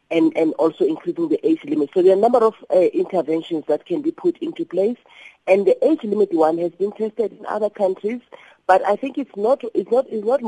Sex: female